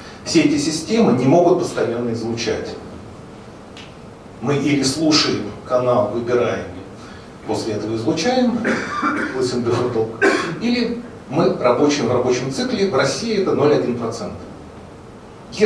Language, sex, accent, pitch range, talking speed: Russian, male, native, 115-170 Hz, 95 wpm